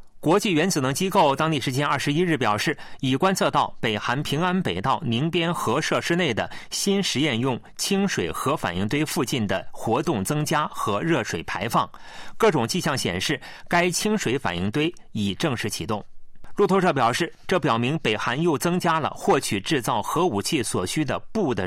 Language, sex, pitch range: Chinese, male, 120-175 Hz